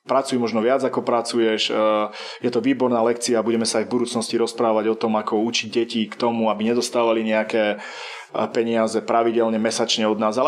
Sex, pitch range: male, 110-125 Hz